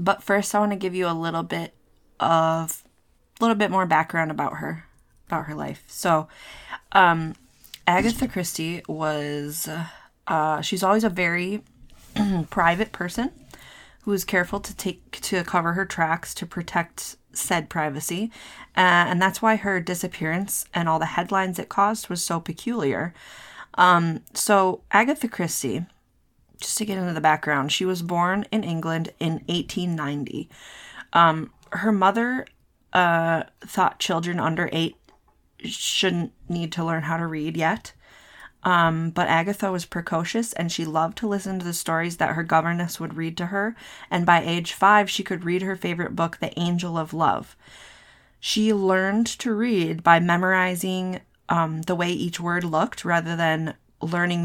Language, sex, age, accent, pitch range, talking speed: English, female, 20-39, American, 165-195 Hz, 160 wpm